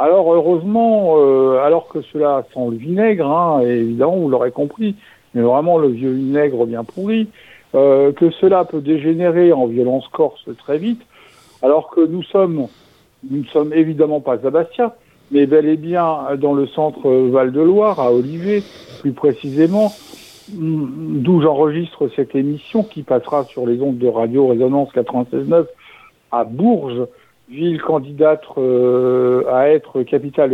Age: 60-79